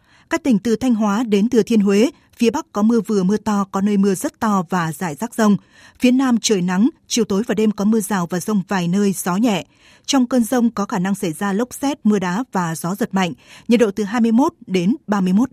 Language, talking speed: Vietnamese, 245 wpm